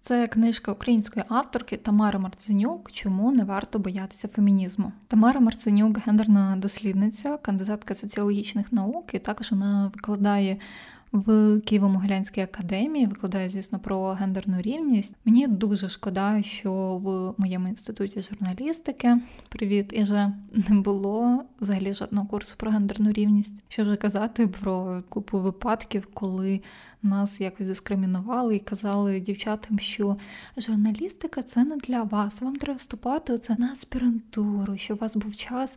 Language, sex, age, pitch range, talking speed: Ukrainian, female, 20-39, 200-225 Hz, 135 wpm